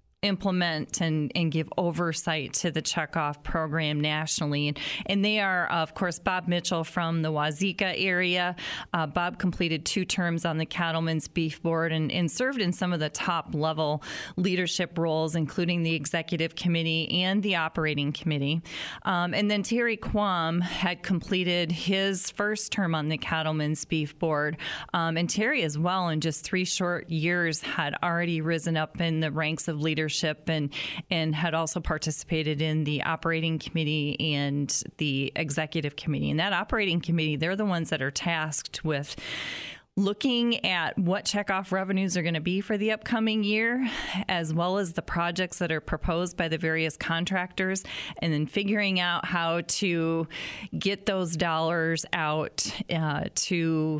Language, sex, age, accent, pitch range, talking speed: English, female, 30-49, American, 155-185 Hz, 160 wpm